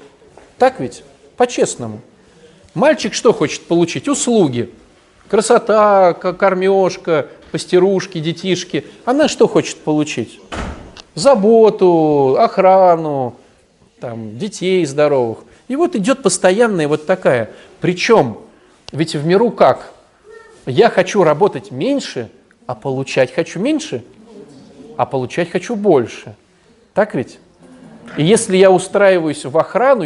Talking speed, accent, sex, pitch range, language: 100 wpm, native, male, 150-220 Hz, Russian